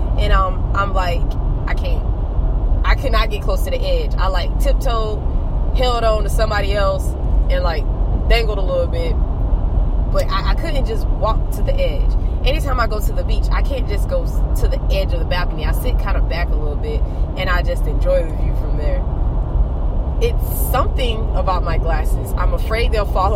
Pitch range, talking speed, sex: 80-115 Hz, 200 wpm, female